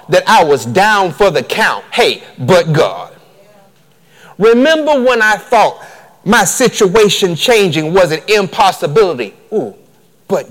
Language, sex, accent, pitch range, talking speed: English, male, American, 165-235 Hz, 125 wpm